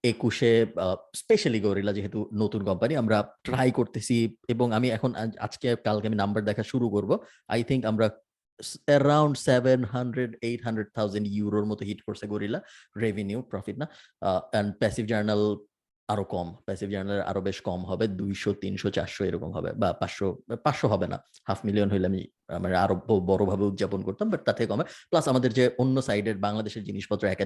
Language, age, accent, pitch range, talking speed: Bengali, 20-39, native, 100-120 Hz, 80 wpm